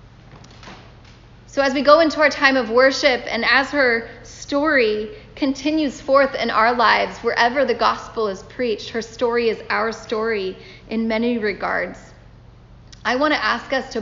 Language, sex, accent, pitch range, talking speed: English, female, American, 225-275 Hz, 160 wpm